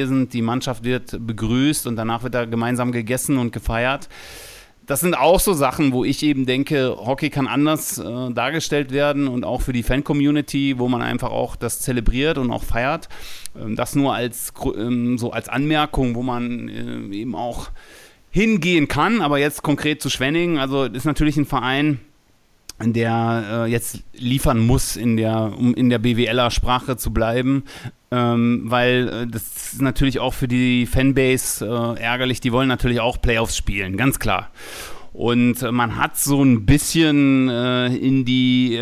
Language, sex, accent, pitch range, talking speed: German, male, German, 120-140 Hz, 160 wpm